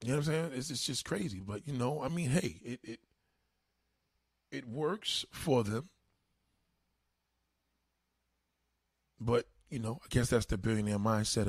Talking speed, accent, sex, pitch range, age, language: 155 wpm, American, male, 90-135 Hz, 20-39, English